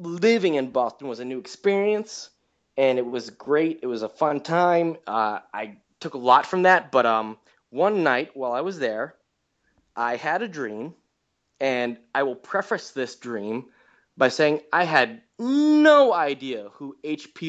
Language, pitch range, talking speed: English, 130-190 Hz, 170 wpm